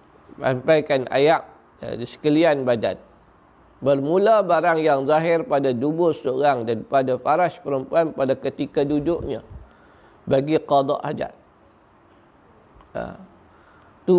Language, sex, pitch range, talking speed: Malay, male, 135-165 Hz, 100 wpm